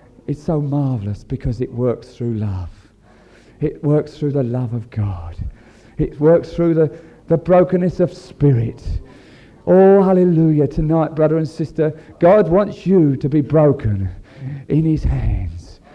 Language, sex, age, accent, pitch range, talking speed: English, male, 40-59, British, 115-165 Hz, 145 wpm